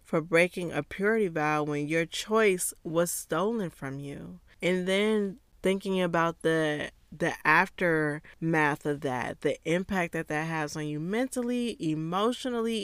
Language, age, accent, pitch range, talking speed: English, 20-39, American, 155-195 Hz, 140 wpm